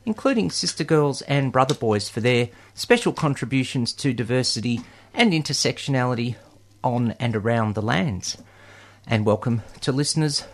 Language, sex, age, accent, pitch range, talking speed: English, male, 40-59, Australian, 110-160 Hz, 130 wpm